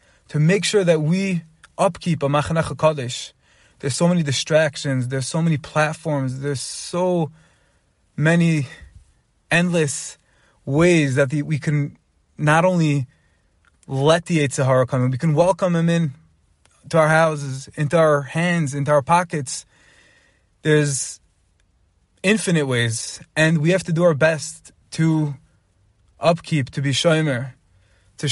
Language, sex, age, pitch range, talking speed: English, male, 20-39, 130-155 Hz, 135 wpm